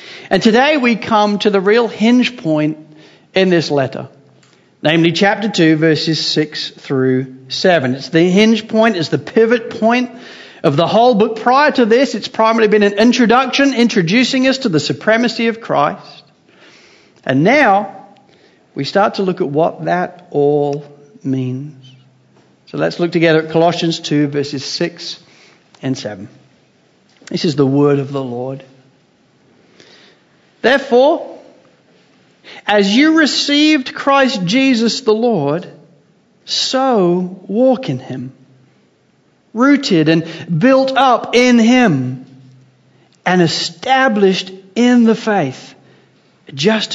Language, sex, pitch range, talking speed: English, male, 145-225 Hz, 125 wpm